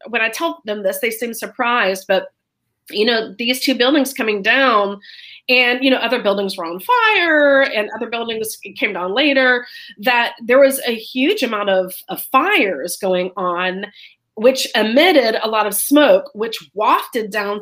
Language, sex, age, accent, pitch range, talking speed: English, female, 30-49, American, 210-280 Hz, 170 wpm